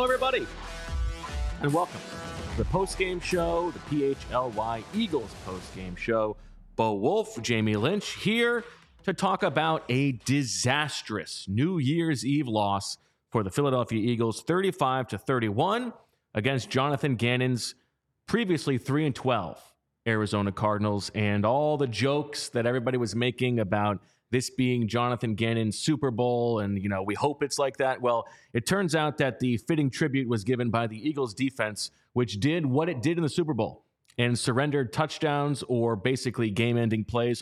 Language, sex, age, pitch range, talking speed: English, male, 30-49, 115-155 Hz, 155 wpm